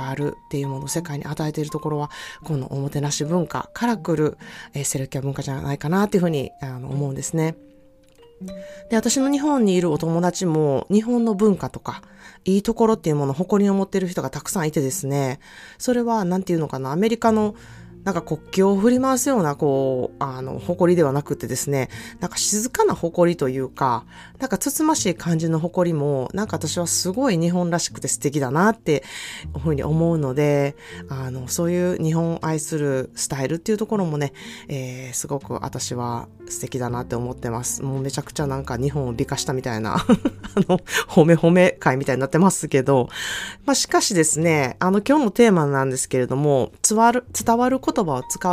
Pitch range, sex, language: 140-195 Hz, female, Japanese